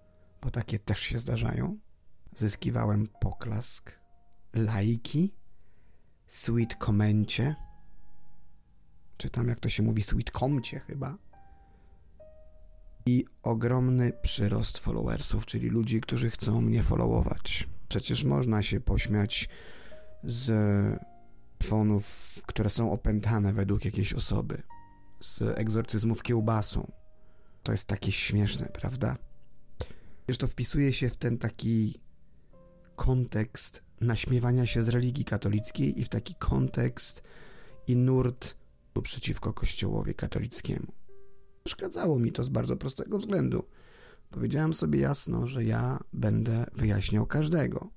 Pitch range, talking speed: 100-120 Hz, 105 wpm